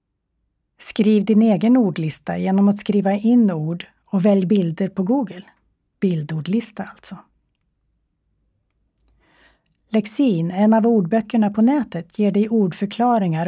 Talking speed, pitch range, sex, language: 110 wpm, 165-215 Hz, female, Swedish